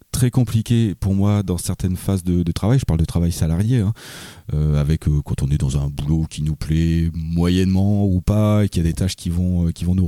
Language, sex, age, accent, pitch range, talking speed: French, male, 30-49, French, 90-115 Hz, 250 wpm